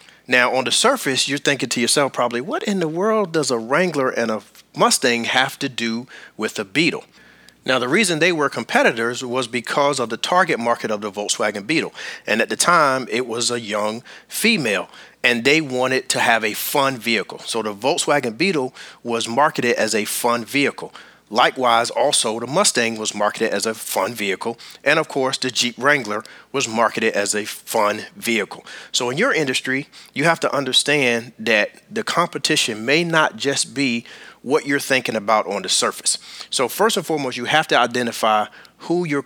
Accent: American